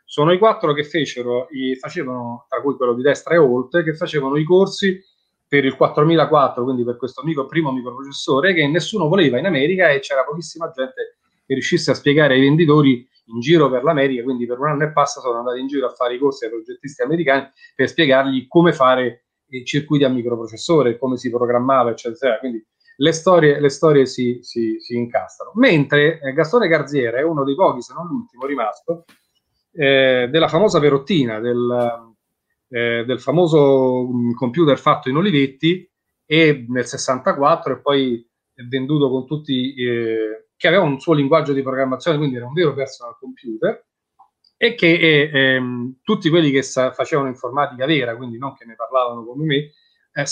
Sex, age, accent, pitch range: male, 30-49, native, 125-155 Hz